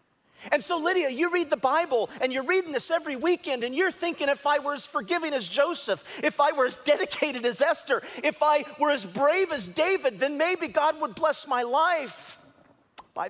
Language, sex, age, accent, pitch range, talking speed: English, male, 50-69, American, 180-295 Hz, 205 wpm